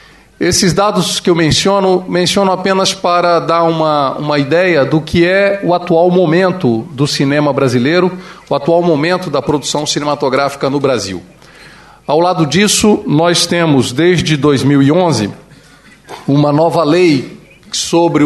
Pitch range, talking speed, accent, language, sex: 140-180 Hz, 130 wpm, Brazilian, English, male